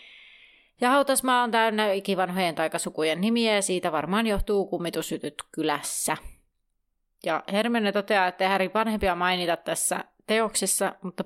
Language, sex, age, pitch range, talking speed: Finnish, female, 30-49, 180-215 Hz, 125 wpm